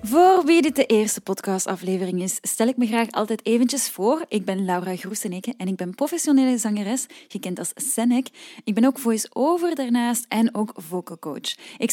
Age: 10-29